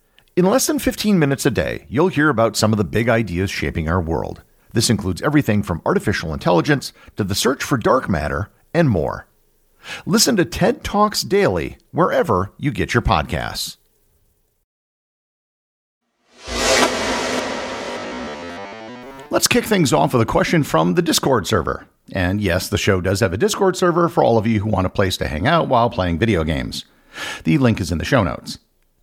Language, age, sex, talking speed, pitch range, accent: English, 50-69, male, 175 wpm, 95-140 Hz, American